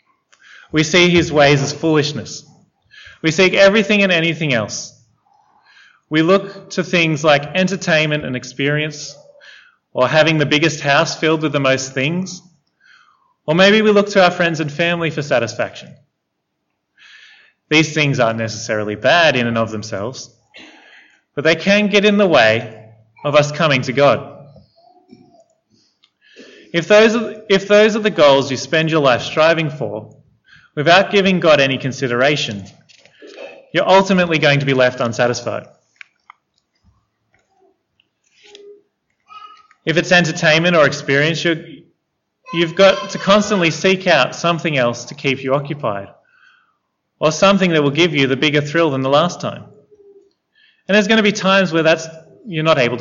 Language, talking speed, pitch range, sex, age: English, 145 wpm, 145-195 Hz, male, 20-39